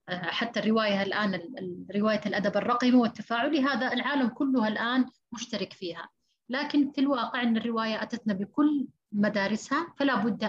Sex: female